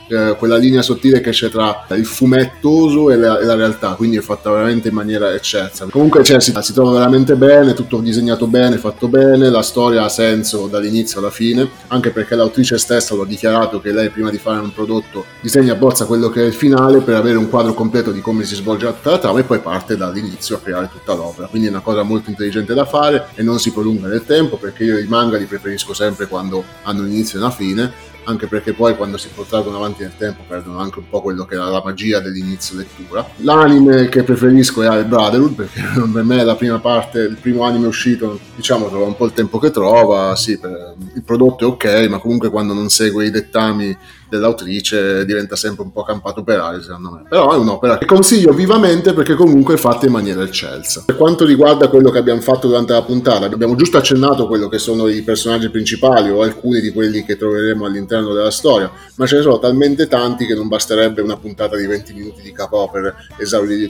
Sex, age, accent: male, 30-49, native